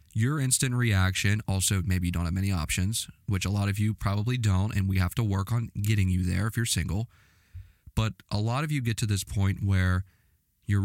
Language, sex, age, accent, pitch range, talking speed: English, male, 20-39, American, 95-110 Hz, 220 wpm